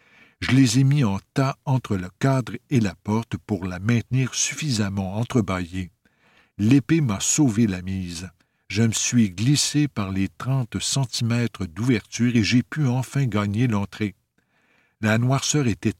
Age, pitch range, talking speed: 60-79, 100-130 Hz, 150 wpm